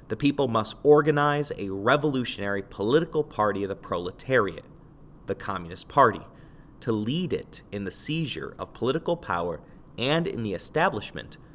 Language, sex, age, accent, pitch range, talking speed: English, male, 30-49, American, 100-140 Hz, 140 wpm